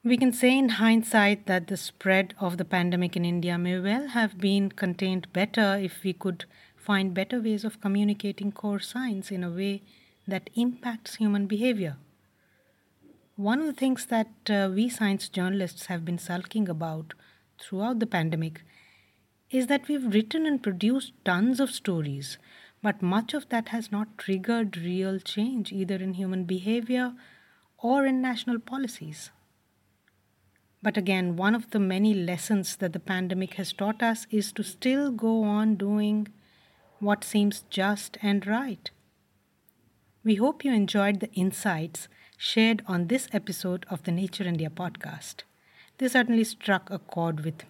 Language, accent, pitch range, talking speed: English, Indian, 180-225 Hz, 155 wpm